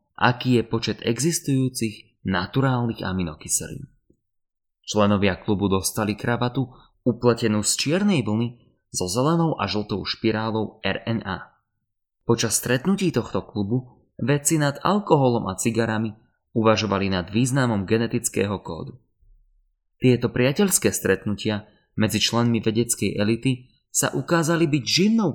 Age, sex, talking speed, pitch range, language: 20-39, male, 105 wpm, 100-125 Hz, Slovak